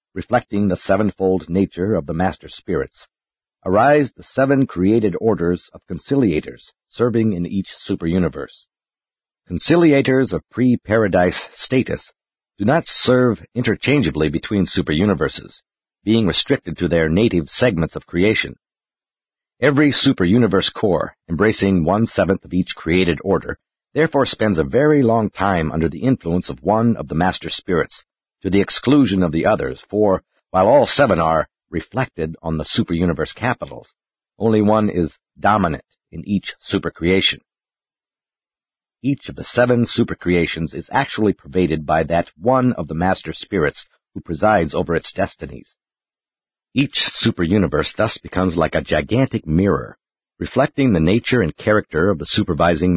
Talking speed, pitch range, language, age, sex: 135 wpm, 85-115 Hz, English, 50-69, male